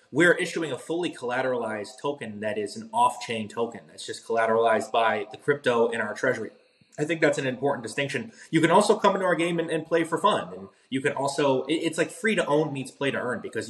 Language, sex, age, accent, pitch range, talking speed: English, male, 20-39, American, 125-165 Hz, 230 wpm